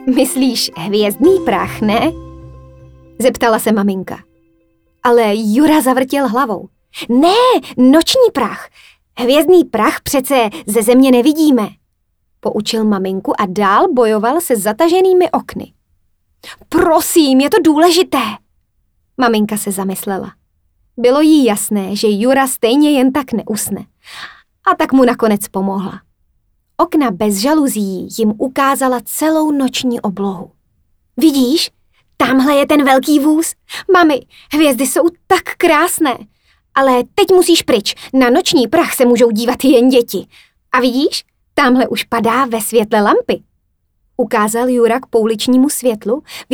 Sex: female